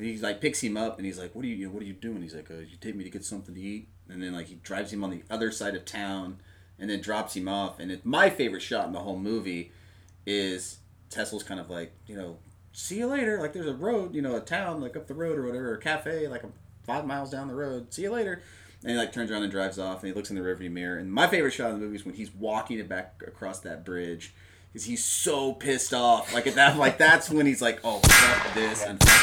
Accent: American